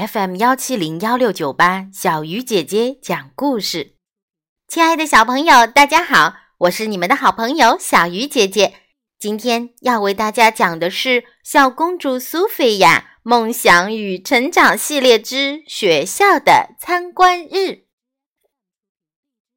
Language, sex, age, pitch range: Chinese, female, 20-39, 195-300 Hz